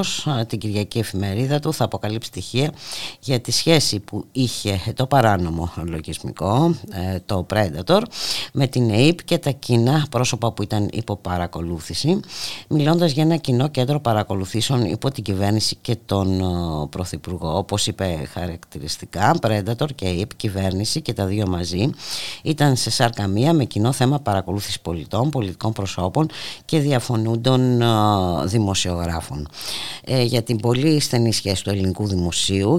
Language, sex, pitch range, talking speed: Greek, female, 95-130 Hz, 135 wpm